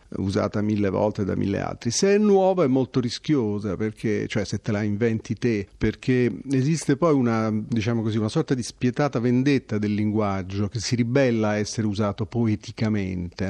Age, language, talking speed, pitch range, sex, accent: 40-59, Italian, 175 wpm, 110-145 Hz, male, native